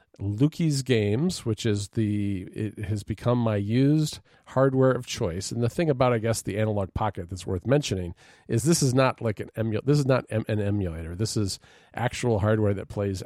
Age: 40-59